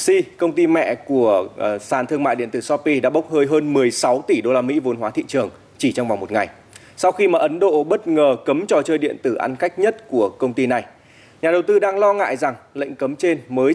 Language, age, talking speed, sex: Vietnamese, 20-39, 255 wpm, male